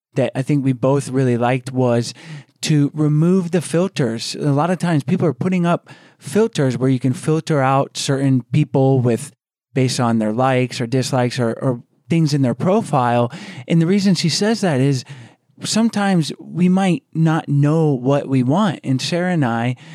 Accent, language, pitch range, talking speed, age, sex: American, English, 130-155 Hz, 180 wpm, 30-49, male